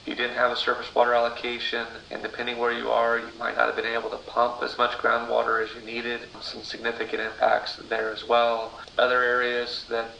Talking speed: 205 wpm